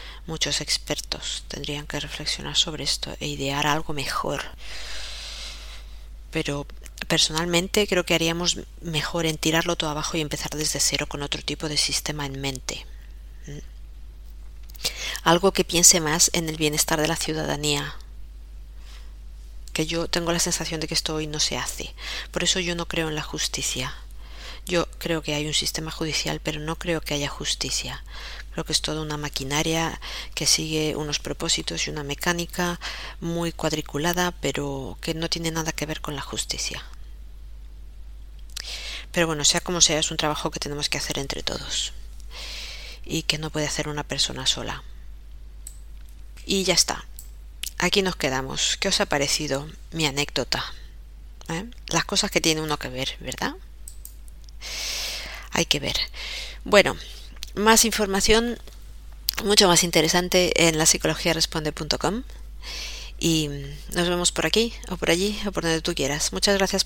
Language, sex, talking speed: Spanish, female, 150 wpm